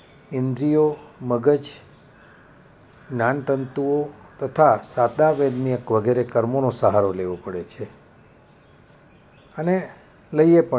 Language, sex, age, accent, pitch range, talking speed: Gujarati, male, 60-79, native, 125-145 Hz, 70 wpm